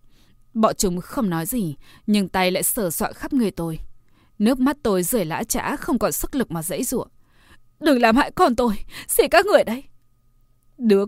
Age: 20-39